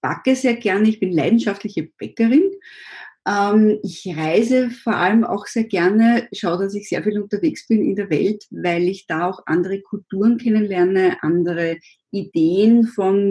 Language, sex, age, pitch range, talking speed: German, female, 20-39, 185-225 Hz, 155 wpm